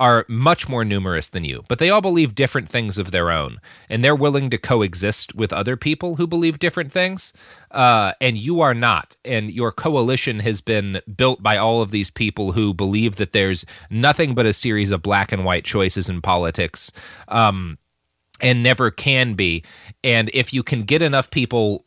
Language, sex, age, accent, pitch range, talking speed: English, male, 30-49, American, 100-130 Hz, 190 wpm